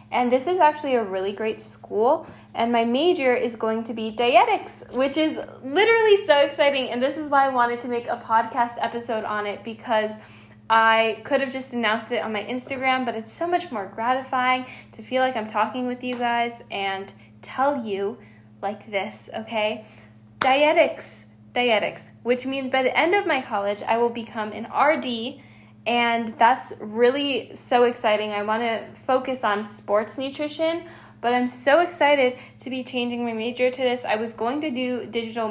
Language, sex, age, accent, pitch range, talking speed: English, female, 10-29, American, 215-260 Hz, 180 wpm